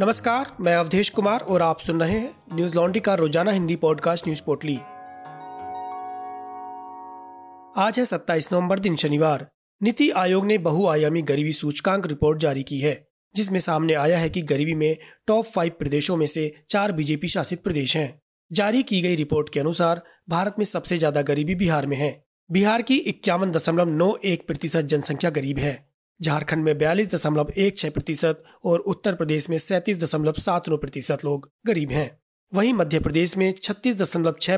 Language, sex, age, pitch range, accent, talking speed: Hindi, male, 30-49, 155-190 Hz, native, 150 wpm